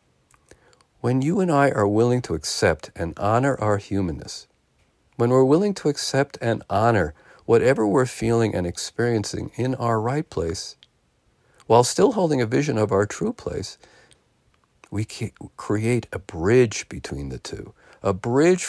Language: English